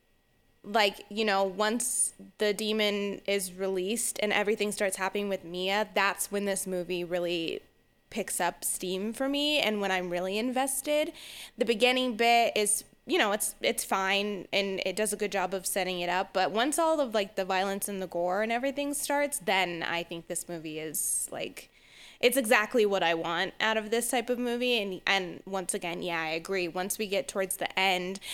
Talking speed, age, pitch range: 195 wpm, 20-39, 180-215 Hz